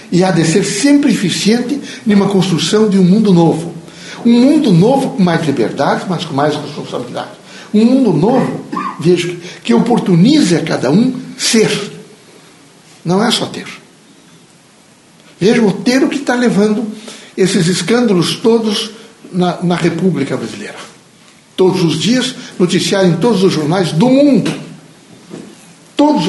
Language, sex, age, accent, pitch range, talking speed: Portuguese, male, 60-79, Brazilian, 160-210 Hz, 140 wpm